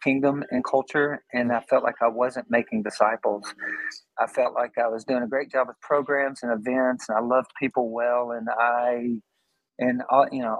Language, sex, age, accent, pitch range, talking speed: English, male, 40-59, American, 120-135 Hz, 200 wpm